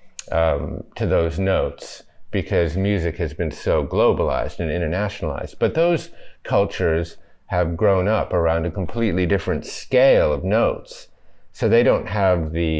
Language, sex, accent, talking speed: English, male, American, 140 wpm